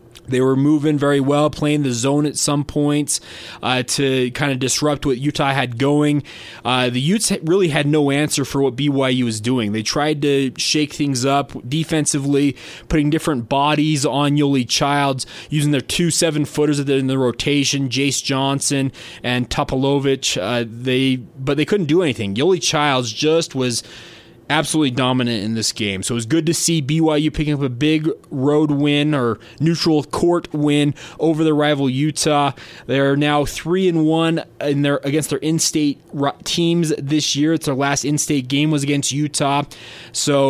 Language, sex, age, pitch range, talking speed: English, male, 20-39, 130-155 Hz, 170 wpm